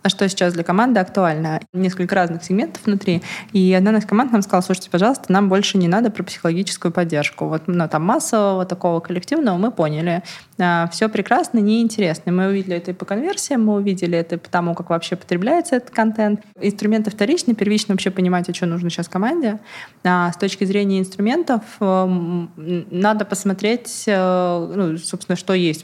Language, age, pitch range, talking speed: Russian, 20-39, 170-205 Hz, 170 wpm